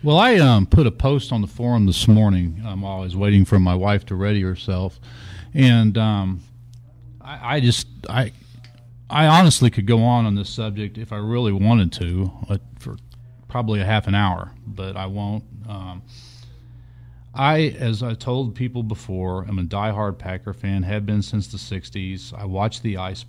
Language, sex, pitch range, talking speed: English, male, 100-120 Hz, 180 wpm